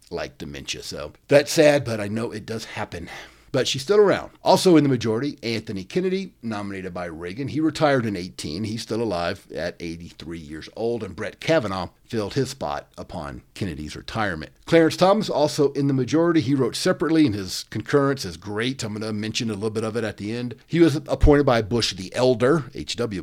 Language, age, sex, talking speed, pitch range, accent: English, 50-69, male, 200 wpm, 105-150 Hz, American